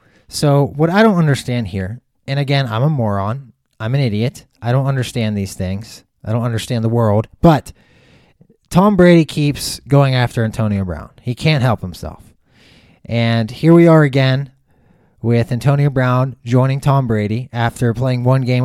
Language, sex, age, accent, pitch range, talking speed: English, male, 20-39, American, 115-140 Hz, 165 wpm